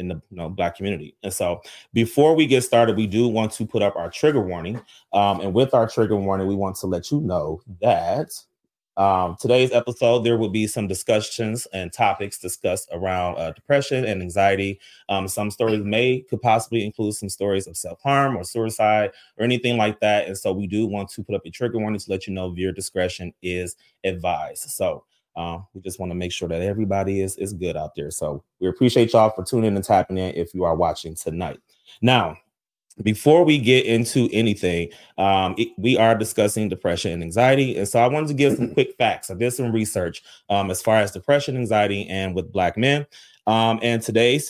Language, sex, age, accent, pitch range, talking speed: English, male, 30-49, American, 95-120 Hz, 210 wpm